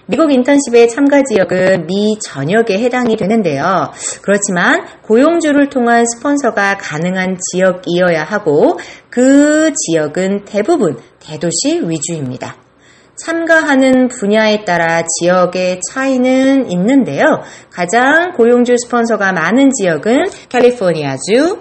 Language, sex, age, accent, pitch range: Korean, female, 40-59, native, 175-275 Hz